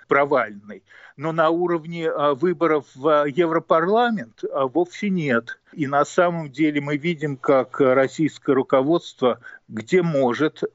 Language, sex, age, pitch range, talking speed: Russian, male, 50-69, 130-170 Hz, 105 wpm